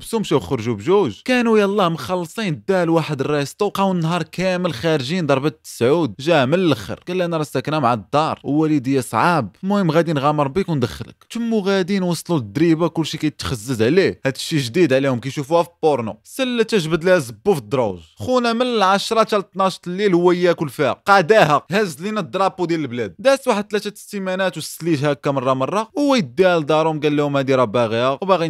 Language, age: Arabic, 20-39